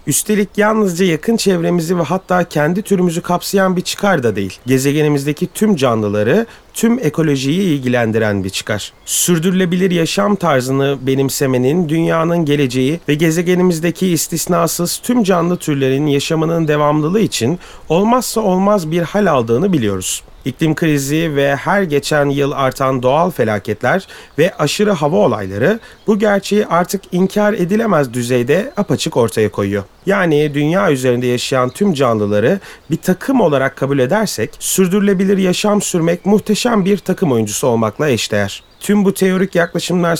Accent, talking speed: native, 130 wpm